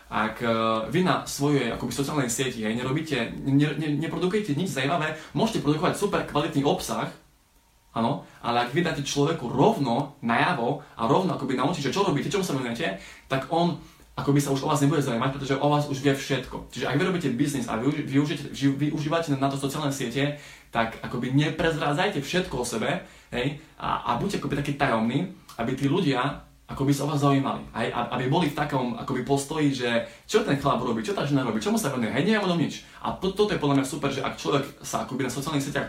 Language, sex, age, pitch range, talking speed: Slovak, male, 20-39, 130-150 Hz, 205 wpm